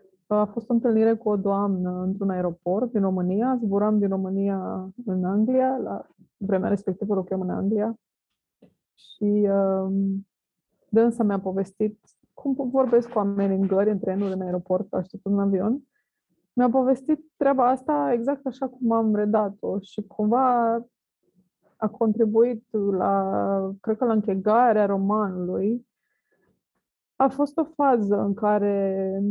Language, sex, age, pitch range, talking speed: Romanian, female, 20-39, 195-225 Hz, 130 wpm